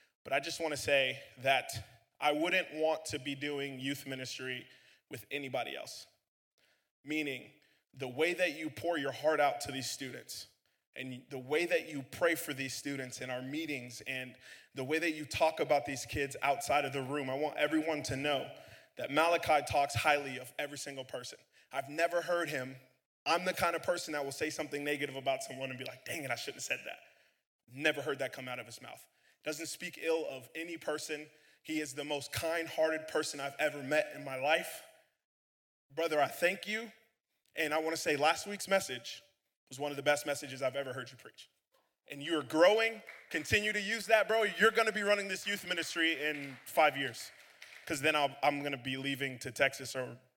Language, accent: English, American